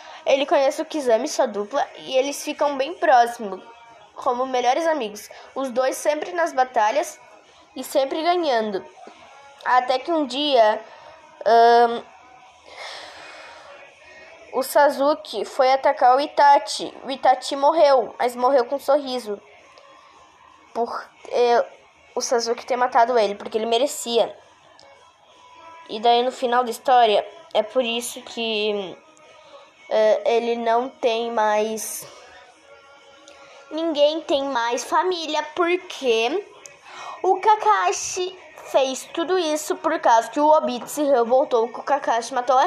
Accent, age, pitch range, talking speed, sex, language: Brazilian, 10-29, 235-310 Hz, 120 wpm, female, Portuguese